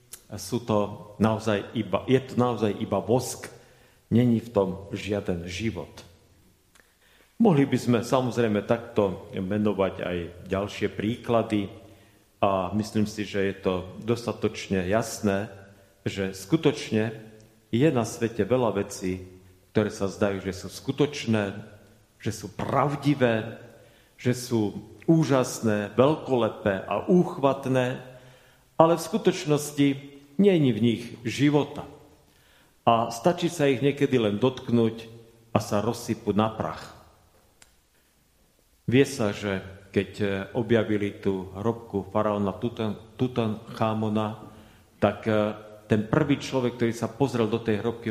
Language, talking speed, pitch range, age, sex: Slovak, 115 wpm, 100-120 Hz, 50-69, male